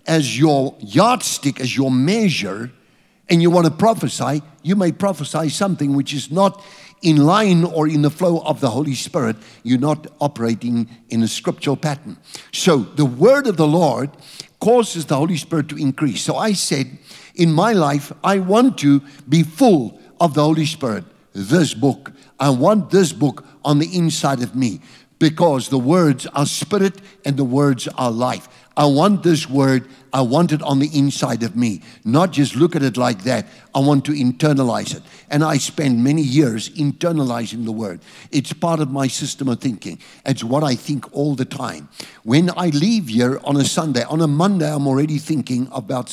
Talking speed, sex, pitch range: 185 wpm, male, 135-170 Hz